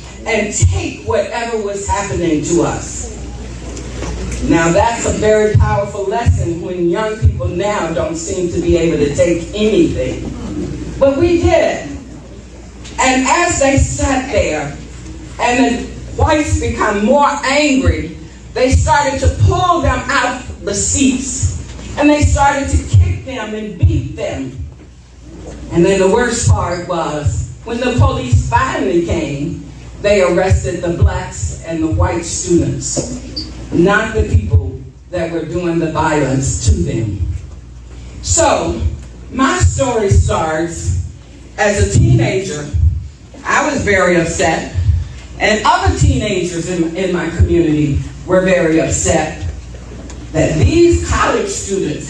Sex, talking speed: female, 130 wpm